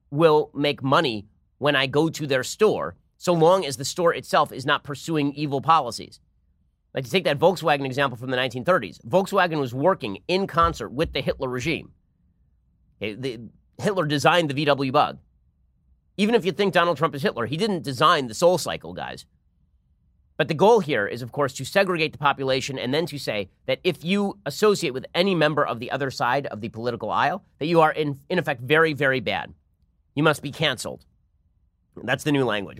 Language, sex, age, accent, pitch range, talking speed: English, male, 30-49, American, 110-165 Hz, 190 wpm